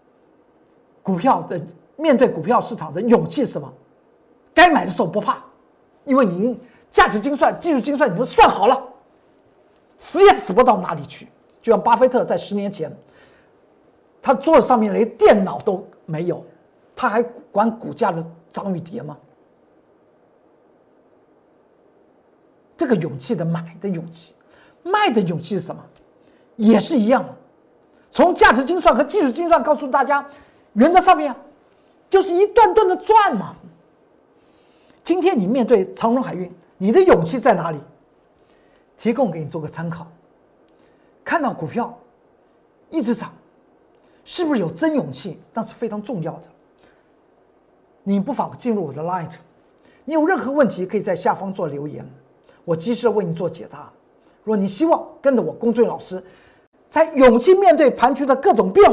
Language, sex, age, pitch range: Chinese, male, 50-69, 190-295 Hz